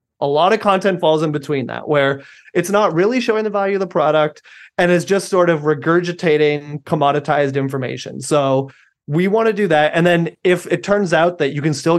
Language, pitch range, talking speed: English, 140-175 Hz, 210 wpm